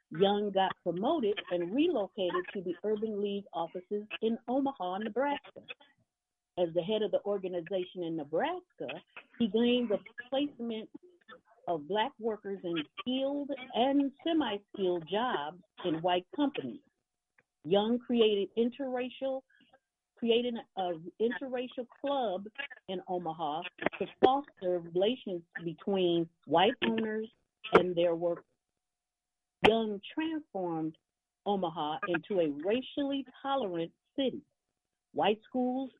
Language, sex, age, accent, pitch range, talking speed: English, female, 50-69, American, 175-250 Hz, 105 wpm